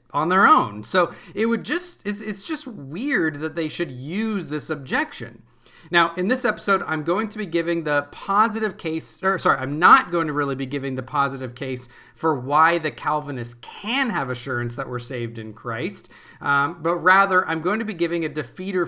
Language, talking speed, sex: English, 195 wpm, male